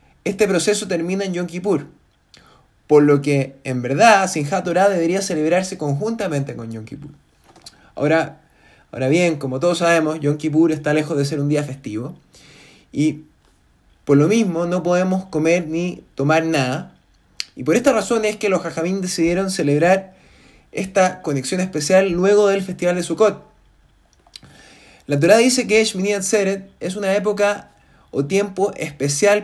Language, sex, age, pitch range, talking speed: Spanish, male, 20-39, 150-195 Hz, 150 wpm